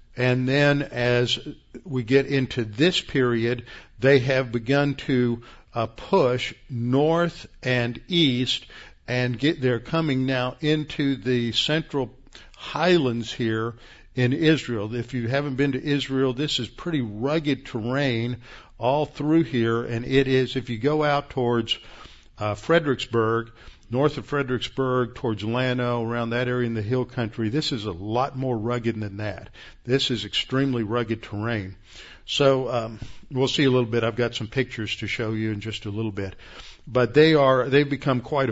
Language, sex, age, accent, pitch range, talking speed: English, male, 50-69, American, 115-140 Hz, 160 wpm